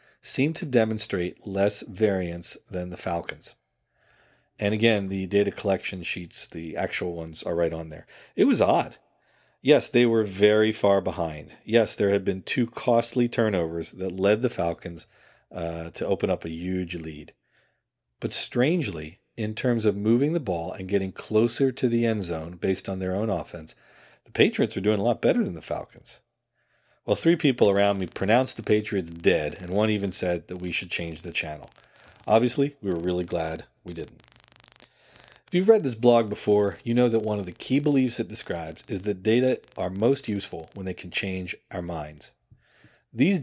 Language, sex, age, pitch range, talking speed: English, male, 40-59, 90-115 Hz, 185 wpm